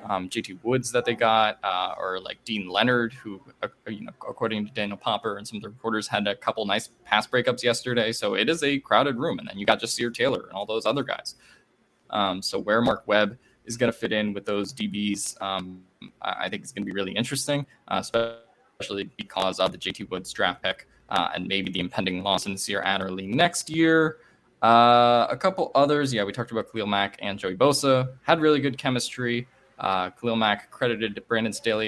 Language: English